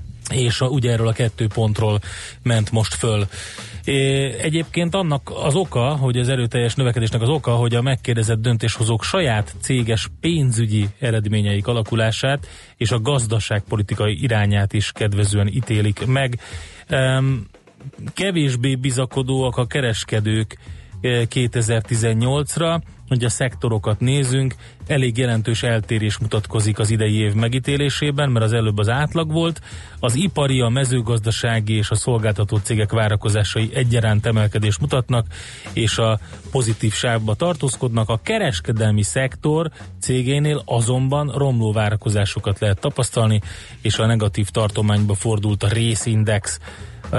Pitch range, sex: 105-130 Hz, male